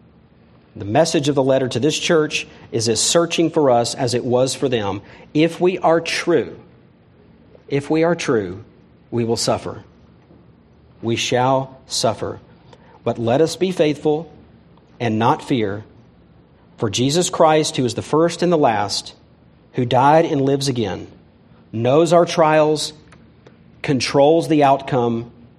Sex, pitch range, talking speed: male, 120-165 Hz, 145 wpm